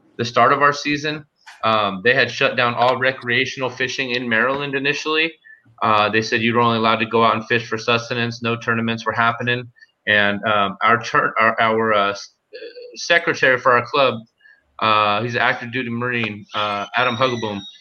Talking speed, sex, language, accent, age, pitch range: 180 wpm, male, English, American, 30-49, 115-135 Hz